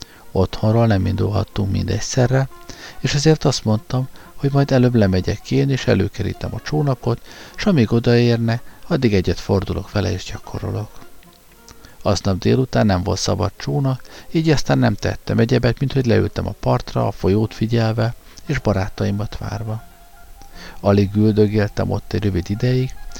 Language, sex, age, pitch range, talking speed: Hungarian, male, 50-69, 100-120 Hz, 140 wpm